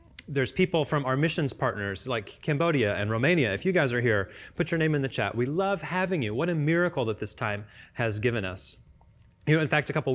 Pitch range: 115-155 Hz